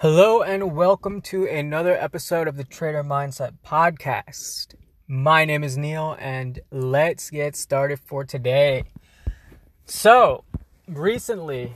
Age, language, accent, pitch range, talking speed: 20-39, English, American, 130-165 Hz, 115 wpm